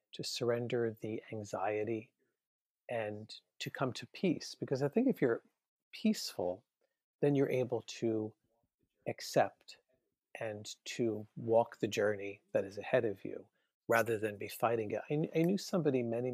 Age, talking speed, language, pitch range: 40-59, 145 wpm, English, 115-155 Hz